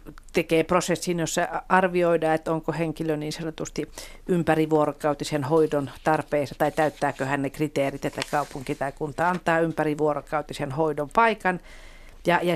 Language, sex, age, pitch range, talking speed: Finnish, female, 50-69, 145-165 Hz, 125 wpm